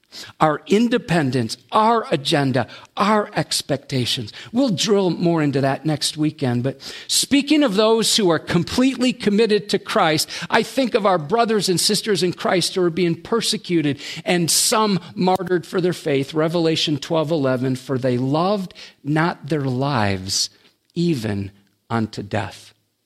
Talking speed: 140 wpm